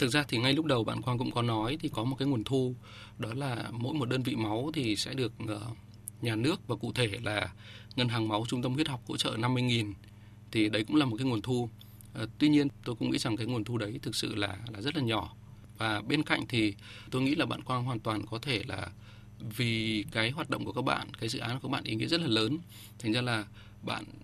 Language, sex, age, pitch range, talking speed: Vietnamese, male, 20-39, 110-130 Hz, 255 wpm